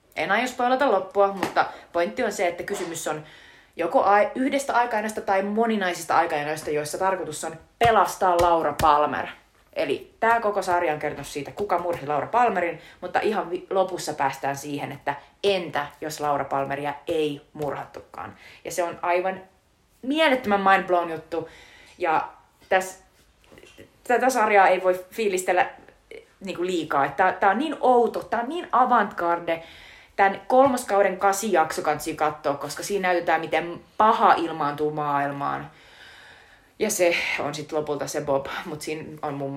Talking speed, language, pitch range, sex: 140 wpm, Finnish, 150-205 Hz, female